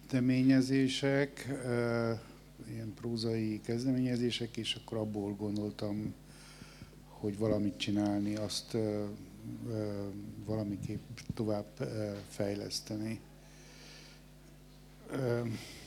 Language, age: Hungarian, 50-69